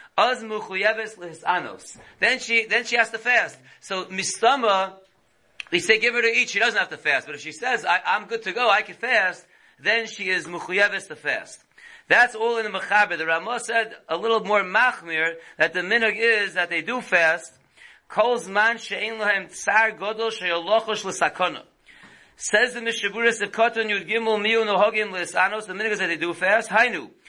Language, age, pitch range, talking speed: English, 40-59, 190-235 Hz, 180 wpm